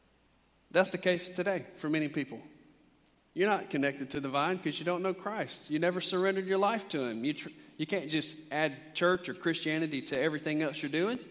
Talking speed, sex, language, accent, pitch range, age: 205 wpm, male, English, American, 145-180 Hz, 40-59